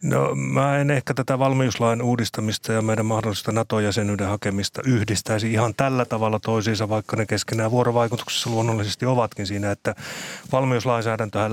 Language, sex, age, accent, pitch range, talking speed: Finnish, male, 30-49, native, 105-115 Hz, 135 wpm